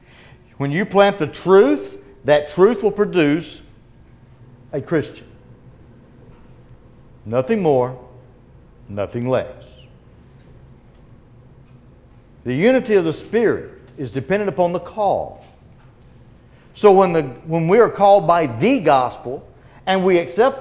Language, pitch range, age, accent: English, 130-205 Hz, 50-69, American